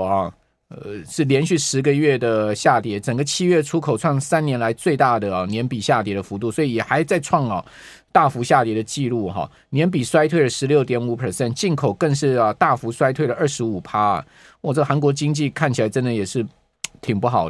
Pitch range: 115-155 Hz